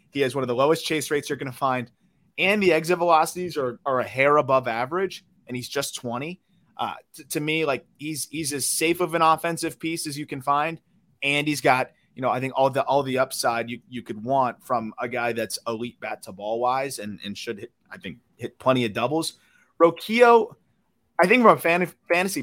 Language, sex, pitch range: English, male, 120-155 Hz